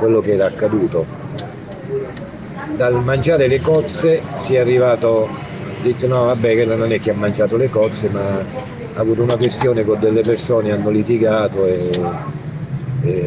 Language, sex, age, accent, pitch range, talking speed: Italian, male, 50-69, native, 105-135 Hz, 160 wpm